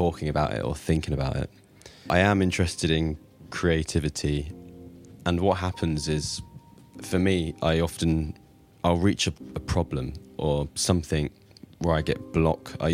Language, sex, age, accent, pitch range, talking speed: English, male, 20-39, British, 75-90 Hz, 150 wpm